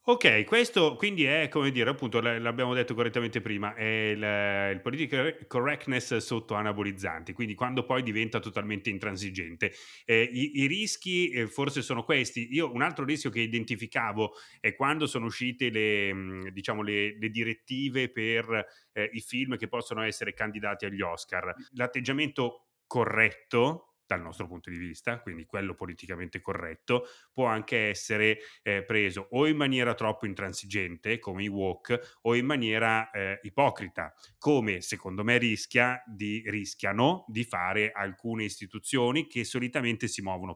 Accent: native